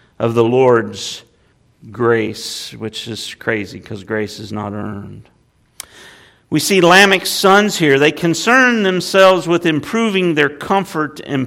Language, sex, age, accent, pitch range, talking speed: English, male, 50-69, American, 120-170 Hz, 130 wpm